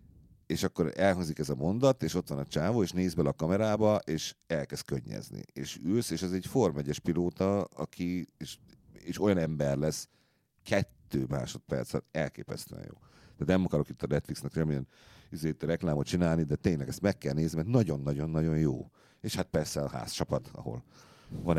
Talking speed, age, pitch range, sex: 170 wpm, 50-69, 70-90 Hz, male